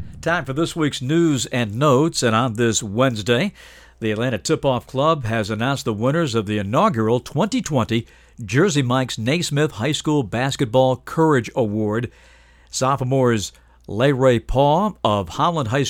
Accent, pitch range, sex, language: American, 110-140 Hz, male, English